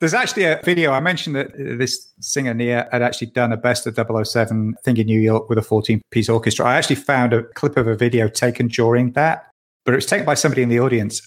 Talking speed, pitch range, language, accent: 245 wpm, 110-140 Hz, English, British